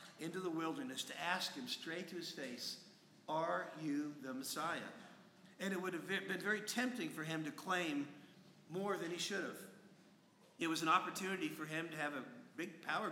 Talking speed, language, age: 190 wpm, English, 50-69